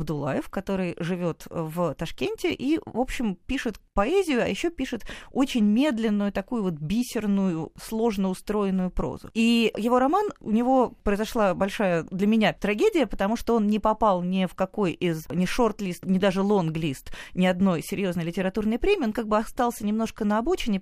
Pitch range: 180-235 Hz